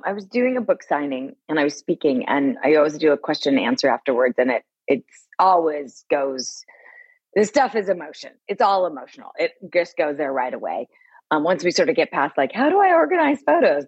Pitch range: 155-250 Hz